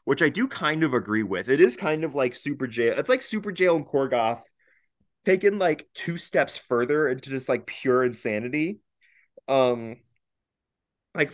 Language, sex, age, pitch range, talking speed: English, male, 20-39, 115-150 Hz, 170 wpm